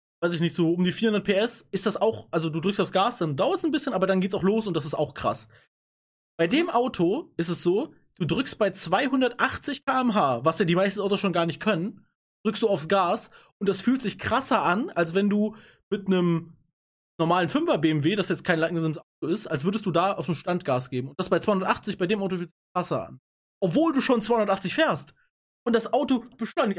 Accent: German